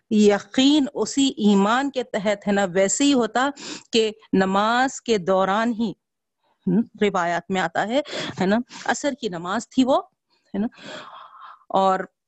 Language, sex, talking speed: Urdu, female, 120 wpm